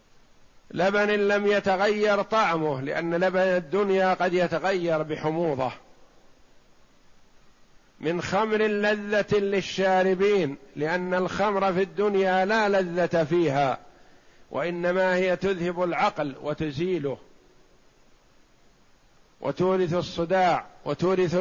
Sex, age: male, 50-69